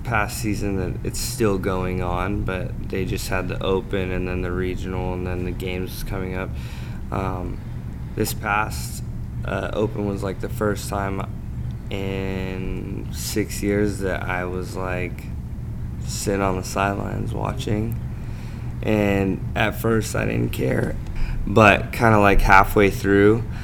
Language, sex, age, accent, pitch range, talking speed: English, male, 20-39, American, 90-110 Hz, 145 wpm